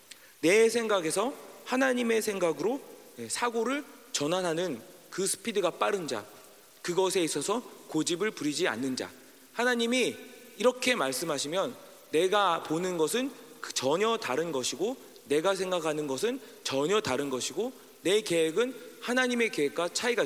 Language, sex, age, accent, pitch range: Korean, male, 40-59, native, 145-235 Hz